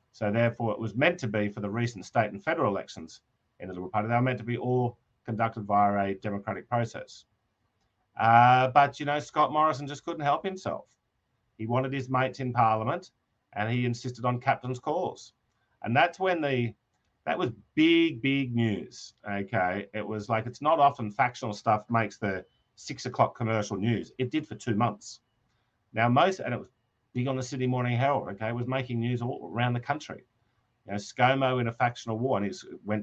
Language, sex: English, male